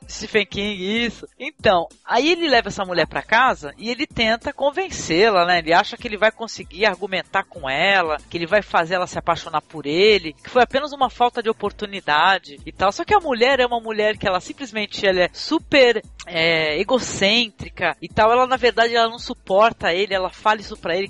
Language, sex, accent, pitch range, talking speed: Portuguese, female, Brazilian, 195-260 Hz, 200 wpm